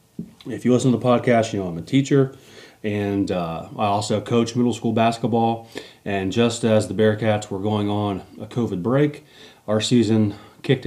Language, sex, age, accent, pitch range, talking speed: English, male, 30-49, American, 100-120 Hz, 180 wpm